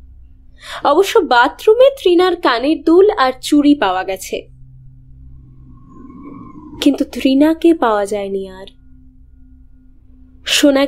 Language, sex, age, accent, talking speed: Bengali, female, 20-39, native, 90 wpm